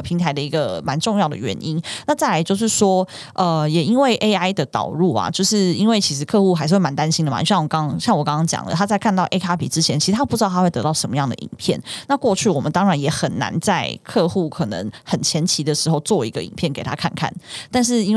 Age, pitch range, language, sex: 20-39, 155-190 Hz, Chinese, female